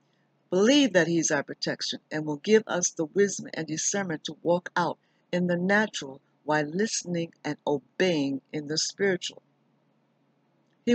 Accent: American